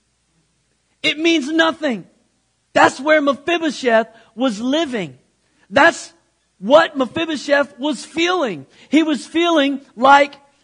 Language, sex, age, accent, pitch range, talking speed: English, male, 50-69, American, 205-280 Hz, 95 wpm